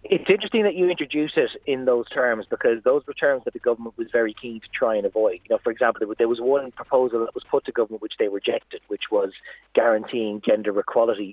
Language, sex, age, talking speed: English, male, 30-49, 235 wpm